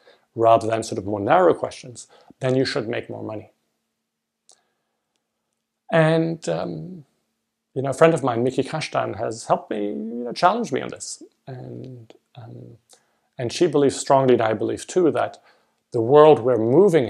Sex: male